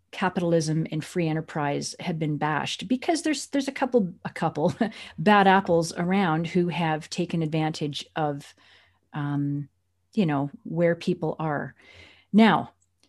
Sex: female